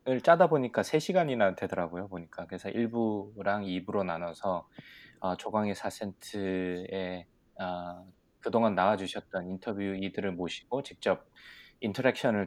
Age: 20-39